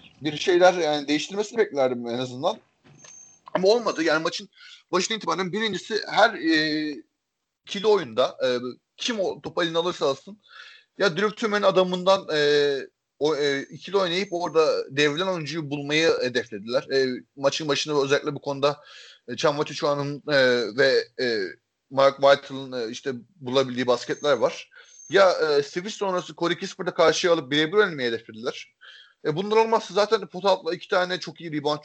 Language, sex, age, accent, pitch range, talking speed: Turkish, male, 30-49, native, 145-200 Hz, 145 wpm